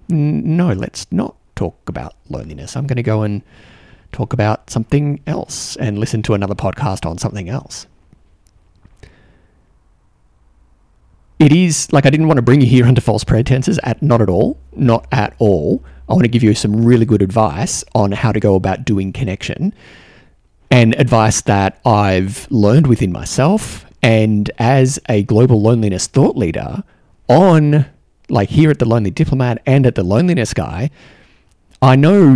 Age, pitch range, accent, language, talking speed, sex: 30-49, 100-135 Hz, Australian, English, 160 wpm, male